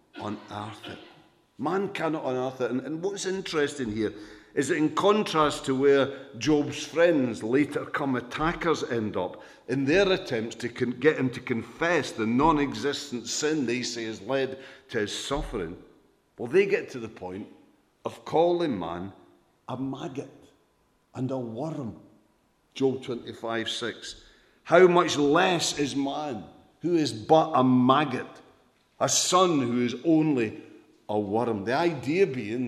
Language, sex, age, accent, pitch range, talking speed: English, male, 50-69, British, 115-160 Hz, 145 wpm